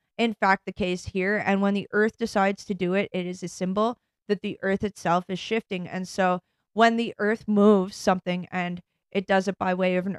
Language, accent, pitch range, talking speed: English, American, 180-210 Hz, 225 wpm